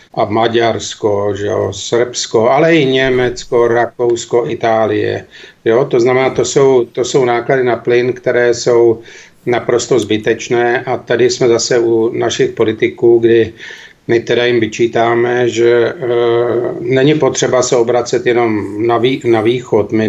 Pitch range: 115-135 Hz